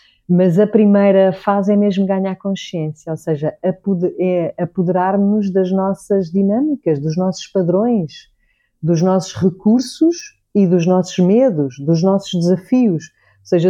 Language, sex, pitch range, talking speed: Portuguese, female, 160-205 Hz, 125 wpm